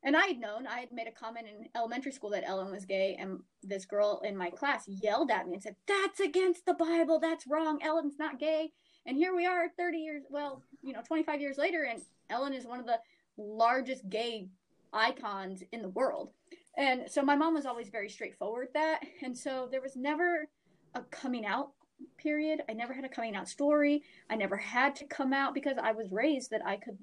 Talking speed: 220 wpm